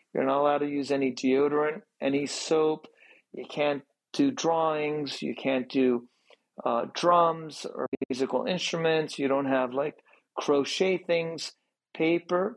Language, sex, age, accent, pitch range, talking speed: English, male, 40-59, American, 135-160 Hz, 135 wpm